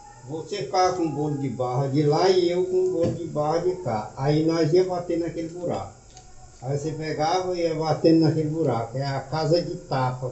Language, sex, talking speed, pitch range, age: Portuguese, male, 220 wpm, 125-155 Hz, 60-79